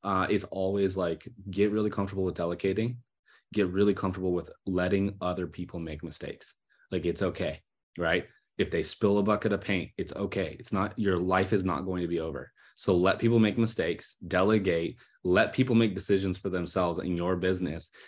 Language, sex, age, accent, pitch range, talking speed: English, male, 20-39, American, 90-110 Hz, 185 wpm